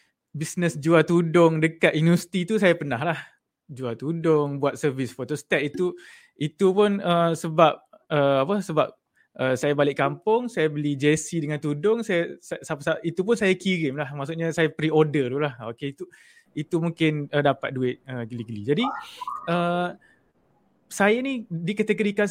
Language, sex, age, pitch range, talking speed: Malay, male, 20-39, 150-190 Hz, 150 wpm